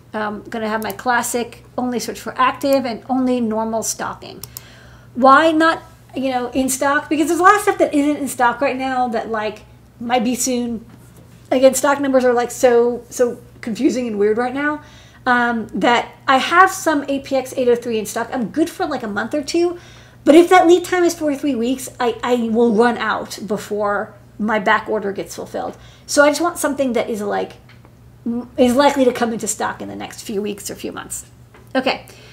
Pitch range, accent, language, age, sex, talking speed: 230-285 Hz, American, English, 40-59, female, 200 wpm